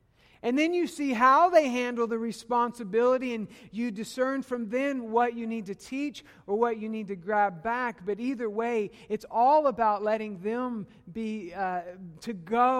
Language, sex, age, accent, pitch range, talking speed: English, male, 50-69, American, 200-255 Hz, 180 wpm